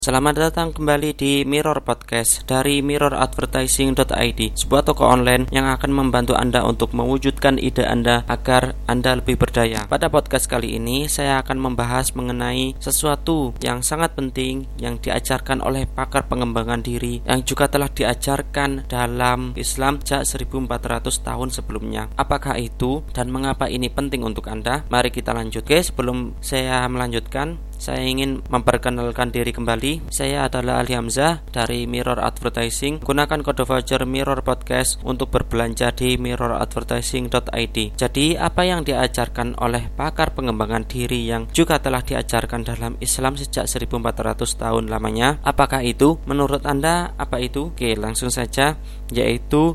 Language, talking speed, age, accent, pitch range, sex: Indonesian, 140 wpm, 20-39, native, 120-140 Hz, male